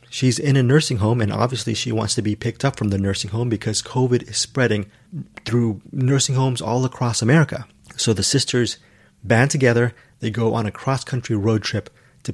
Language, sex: English, male